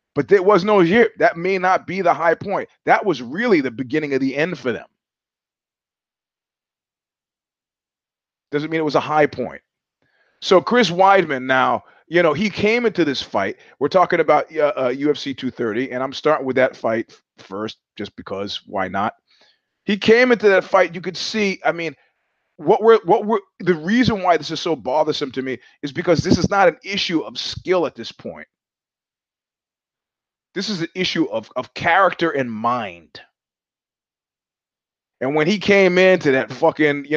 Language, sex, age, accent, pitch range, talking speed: English, male, 30-49, American, 140-180 Hz, 180 wpm